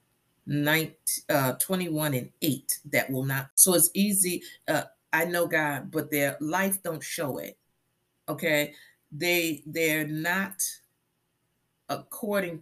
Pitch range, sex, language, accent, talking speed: 135-175 Hz, female, English, American, 130 wpm